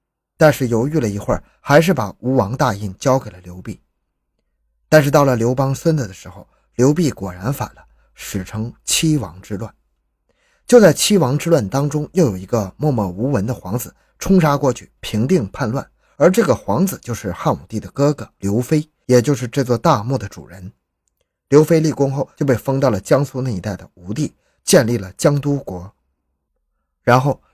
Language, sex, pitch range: Chinese, male, 105-150 Hz